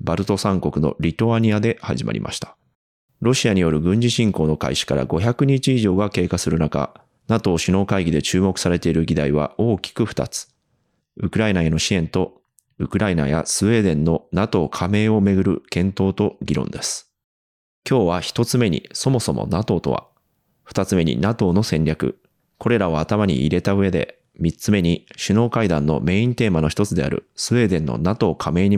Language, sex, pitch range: Japanese, male, 80-115 Hz